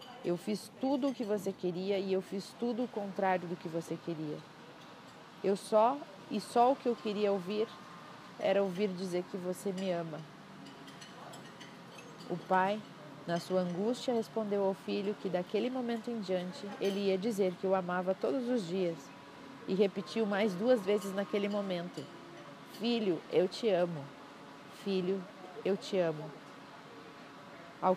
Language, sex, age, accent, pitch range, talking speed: Portuguese, female, 40-59, Brazilian, 175-210 Hz, 150 wpm